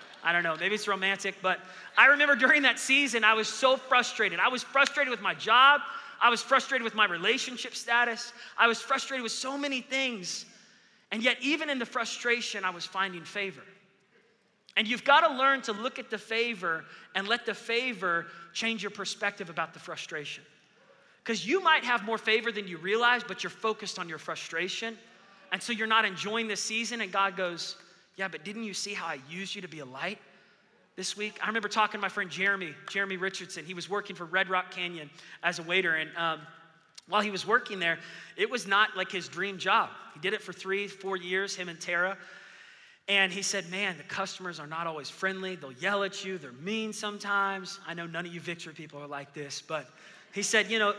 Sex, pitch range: male, 180-225 Hz